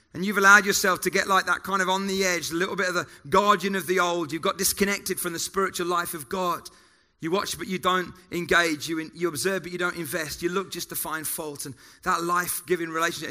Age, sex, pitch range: 30-49, male, 150-185 Hz